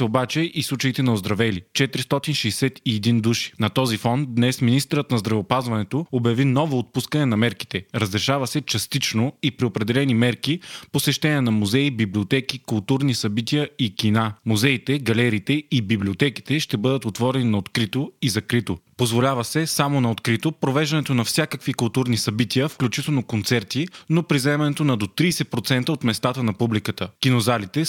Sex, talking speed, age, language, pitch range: male, 145 wpm, 20-39, Bulgarian, 115-140 Hz